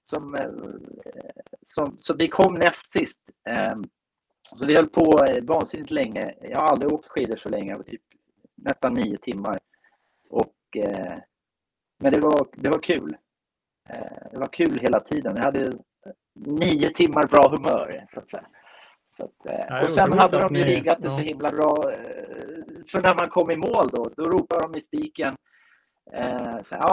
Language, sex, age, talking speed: Swedish, male, 30-49, 165 wpm